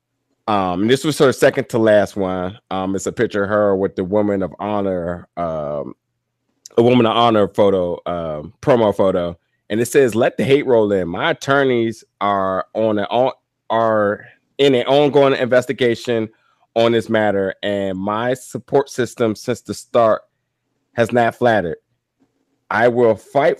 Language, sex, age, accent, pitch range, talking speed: English, male, 30-49, American, 105-125 Hz, 160 wpm